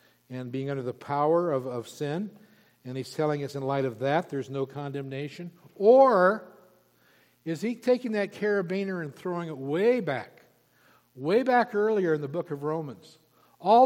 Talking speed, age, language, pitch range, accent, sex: 170 wpm, 60-79, English, 140-185 Hz, American, male